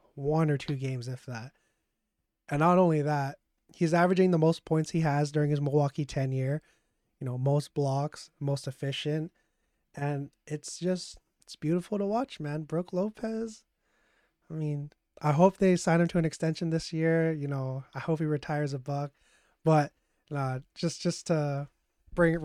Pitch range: 145-170 Hz